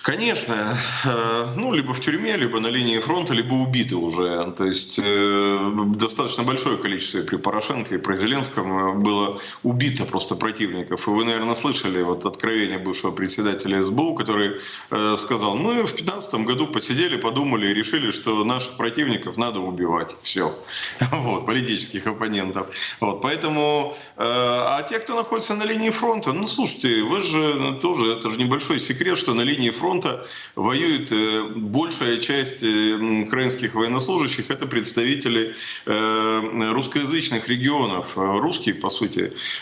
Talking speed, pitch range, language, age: 135 wpm, 105-130 Hz, Russian, 30-49